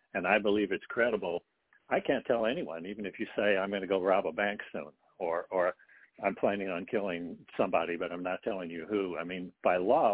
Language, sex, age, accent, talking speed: English, male, 60-79, American, 220 wpm